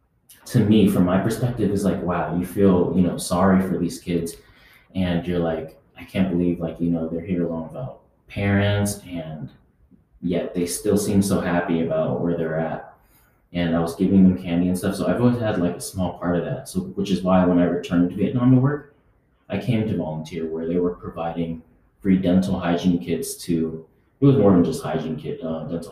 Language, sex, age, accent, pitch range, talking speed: English, male, 30-49, American, 85-95 Hz, 215 wpm